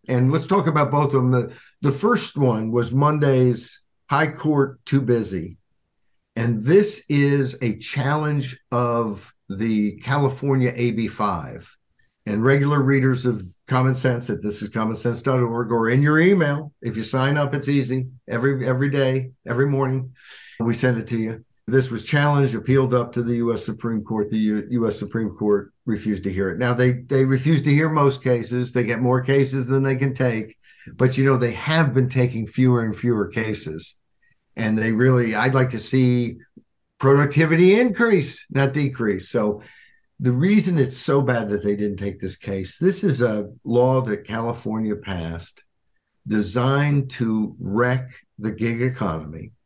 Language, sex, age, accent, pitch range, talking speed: English, male, 60-79, American, 110-135 Hz, 165 wpm